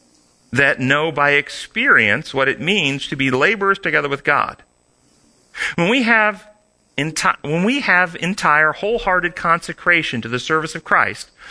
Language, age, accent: English, 40-59, American